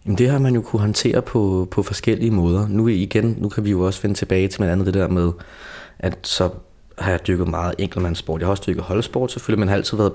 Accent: native